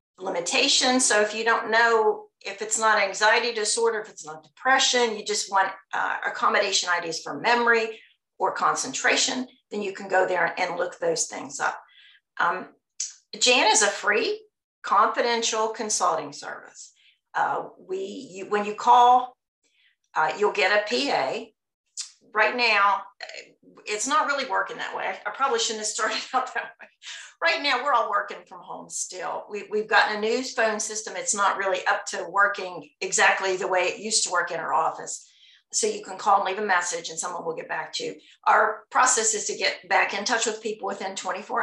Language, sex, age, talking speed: English, female, 50-69, 185 wpm